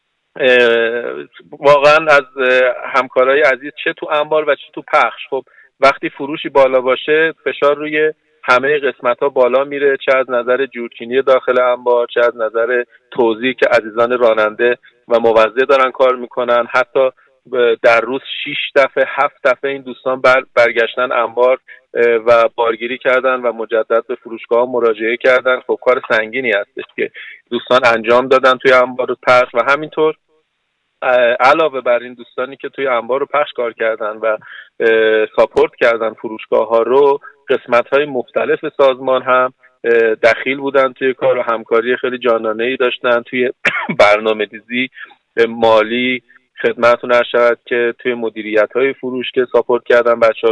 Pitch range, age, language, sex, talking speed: 120-140 Hz, 40-59, Persian, male, 145 wpm